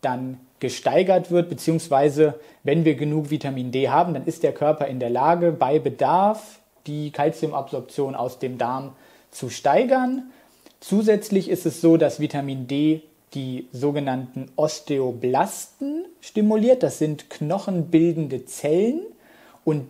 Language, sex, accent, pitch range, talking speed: German, male, German, 135-175 Hz, 125 wpm